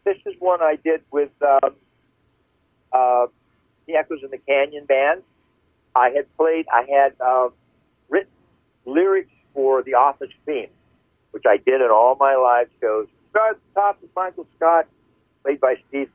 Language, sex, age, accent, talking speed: English, male, 60-79, American, 165 wpm